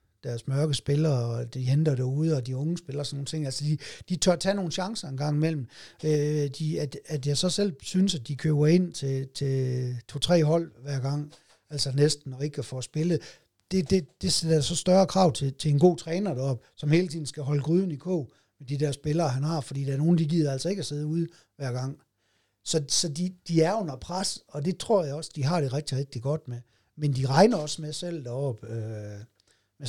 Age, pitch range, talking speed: 60-79, 130-165 Hz, 235 wpm